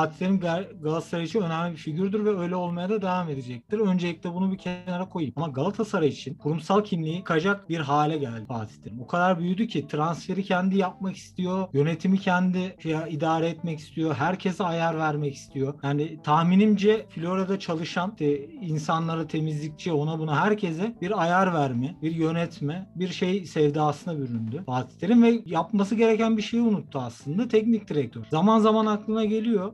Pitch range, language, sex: 150-200 Hz, Turkish, male